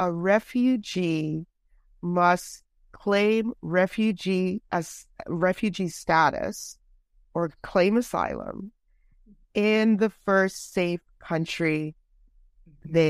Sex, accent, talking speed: female, American, 80 wpm